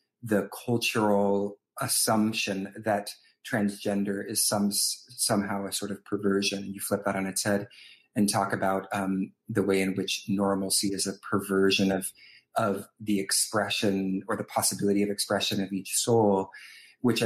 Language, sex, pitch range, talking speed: English, male, 95-110 Hz, 155 wpm